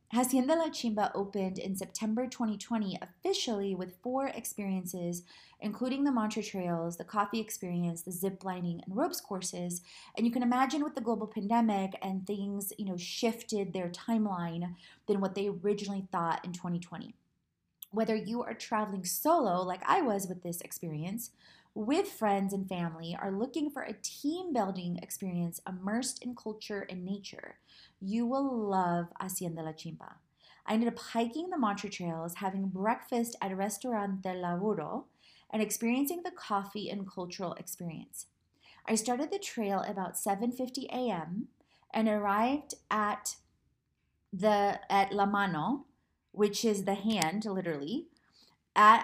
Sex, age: female, 20-39